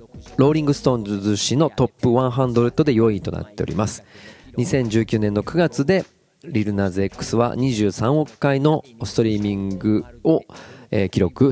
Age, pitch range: 40-59, 100-140 Hz